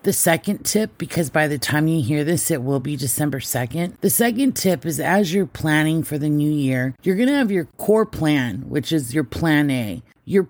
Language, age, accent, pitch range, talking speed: English, 30-49, American, 140-170 Hz, 225 wpm